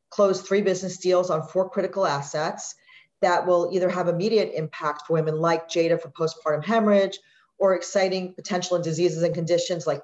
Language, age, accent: English, 40-59, American